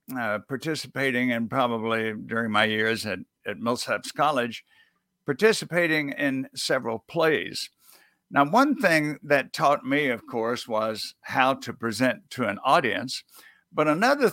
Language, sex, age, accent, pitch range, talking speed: English, male, 60-79, American, 120-160 Hz, 135 wpm